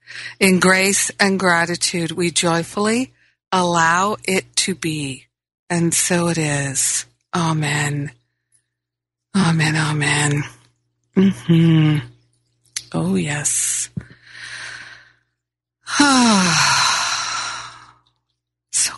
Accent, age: American, 50-69